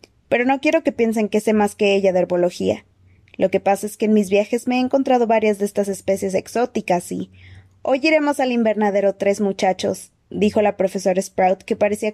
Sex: female